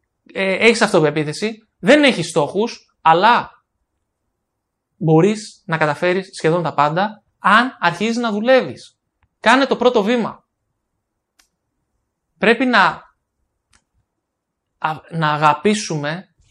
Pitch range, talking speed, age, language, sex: 150-200 Hz, 85 wpm, 20-39, Greek, male